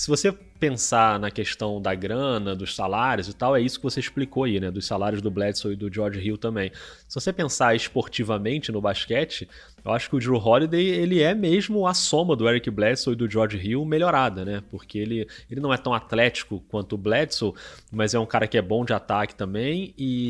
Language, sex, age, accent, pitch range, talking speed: Portuguese, male, 20-39, Brazilian, 105-135 Hz, 220 wpm